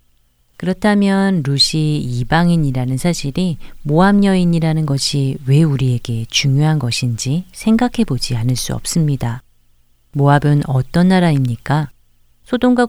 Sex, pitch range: female, 125-165 Hz